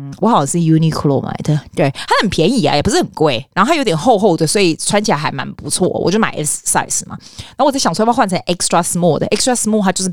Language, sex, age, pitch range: Chinese, female, 20-39, 155-210 Hz